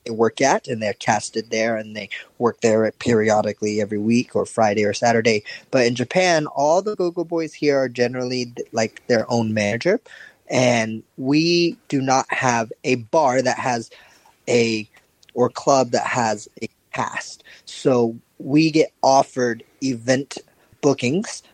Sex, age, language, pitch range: male, 20-39, English, 110-130 Hz